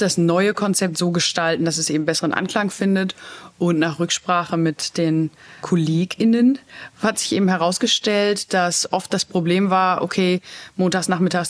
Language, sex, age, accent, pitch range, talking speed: German, female, 30-49, German, 165-190 Hz, 150 wpm